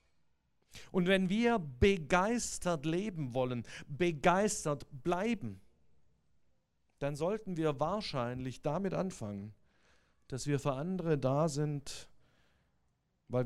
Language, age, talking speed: German, 50-69, 95 wpm